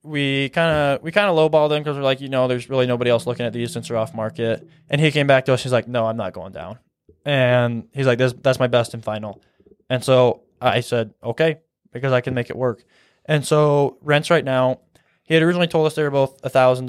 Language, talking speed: English, 255 wpm